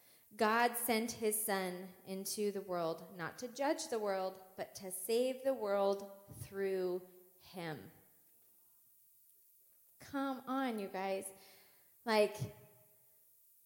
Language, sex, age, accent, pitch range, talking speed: English, female, 20-39, American, 180-210 Hz, 105 wpm